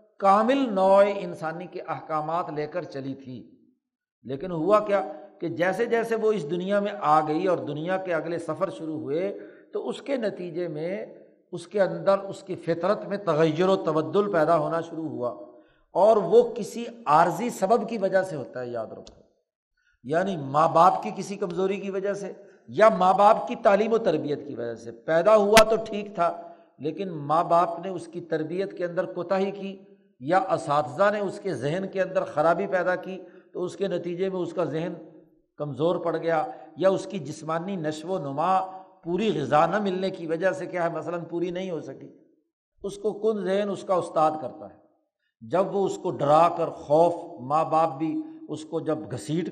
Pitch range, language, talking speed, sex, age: 155-195 Hz, Urdu, 195 wpm, male, 50-69